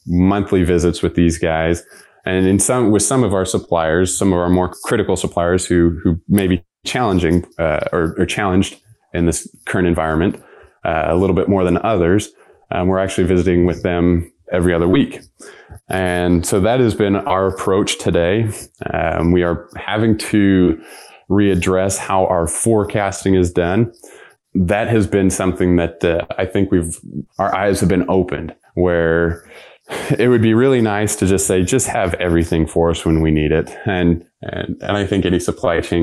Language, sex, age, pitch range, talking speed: English, male, 20-39, 85-95 Hz, 180 wpm